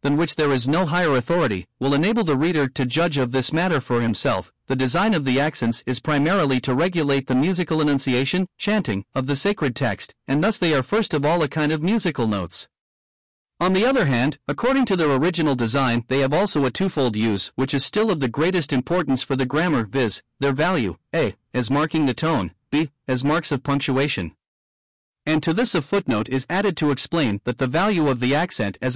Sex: male